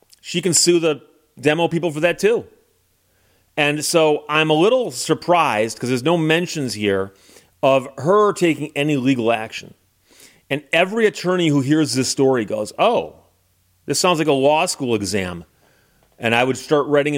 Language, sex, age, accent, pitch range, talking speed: English, male, 40-59, American, 125-155 Hz, 165 wpm